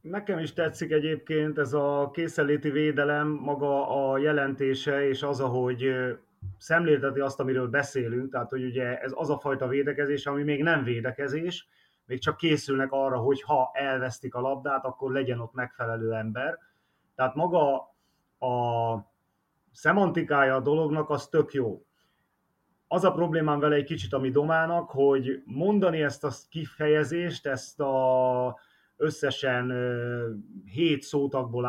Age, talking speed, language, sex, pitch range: 30-49, 135 wpm, Hungarian, male, 130-155 Hz